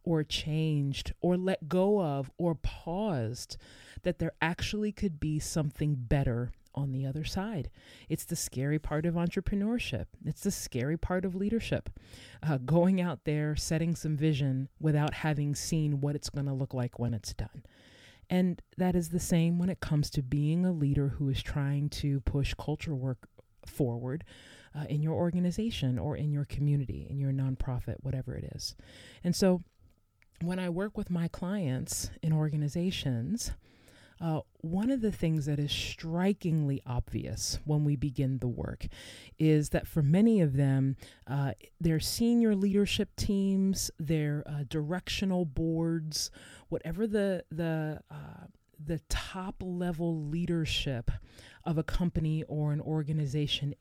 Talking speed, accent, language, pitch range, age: 155 wpm, American, English, 135-175 Hz, 30-49